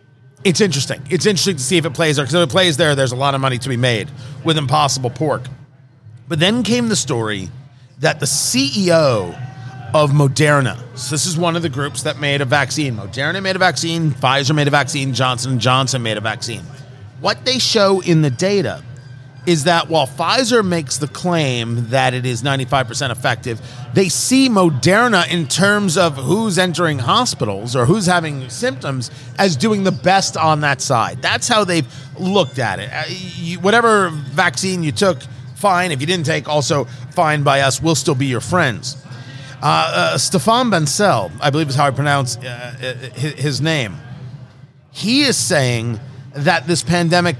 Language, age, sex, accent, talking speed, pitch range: English, 40-59, male, American, 180 wpm, 130-175 Hz